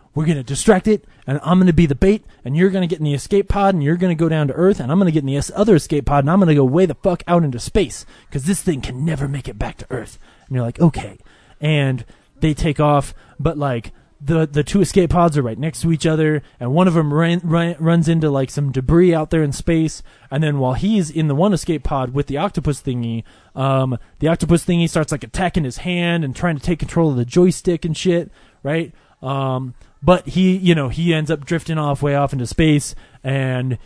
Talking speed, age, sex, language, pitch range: 255 wpm, 20-39, male, English, 135-170 Hz